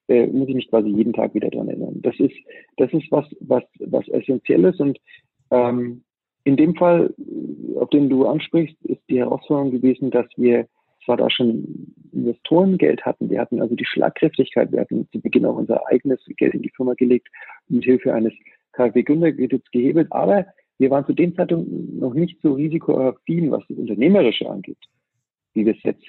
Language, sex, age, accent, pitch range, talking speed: German, male, 50-69, German, 125-160 Hz, 180 wpm